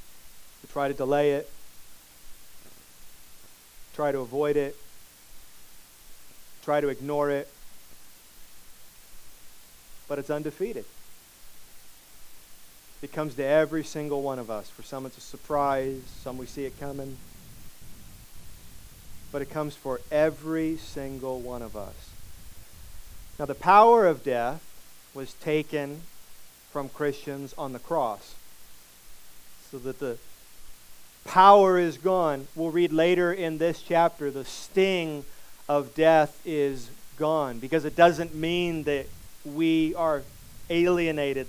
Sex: male